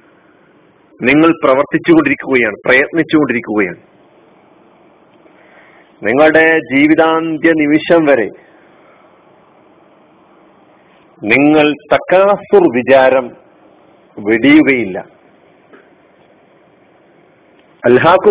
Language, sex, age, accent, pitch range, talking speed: Malayalam, male, 50-69, native, 140-200 Hz, 45 wpm